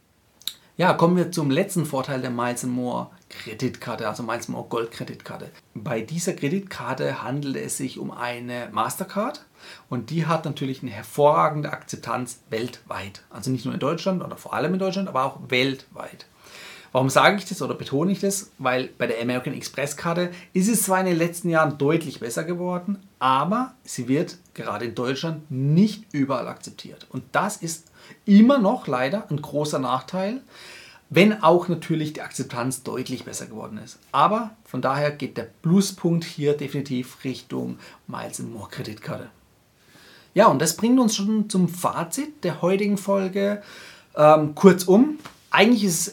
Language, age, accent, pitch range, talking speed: German, 40-59, German, 135-195 Hz, 165 wpm